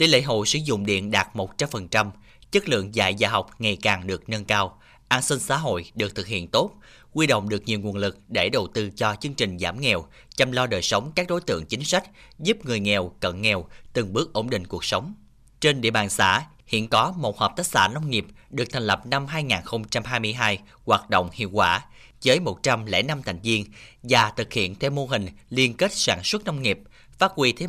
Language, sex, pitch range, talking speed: Vietnamese, male, 105-135 Hz, 215 wpm